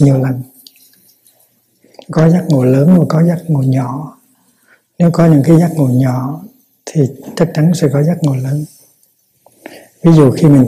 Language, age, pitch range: Vietnamese, 60-79, 130-155 Hz